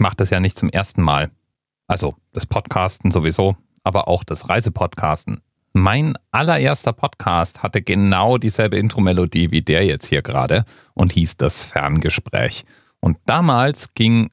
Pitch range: 95-125 Hz